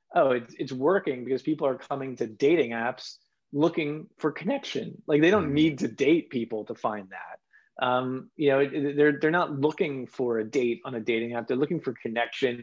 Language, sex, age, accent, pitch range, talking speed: English, male, 20-39, American, 120-155 Hz, 195 wpm